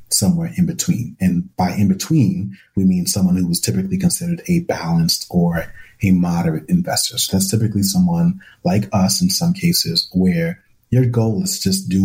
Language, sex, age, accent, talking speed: English, male, 30-49, American, 175 wpm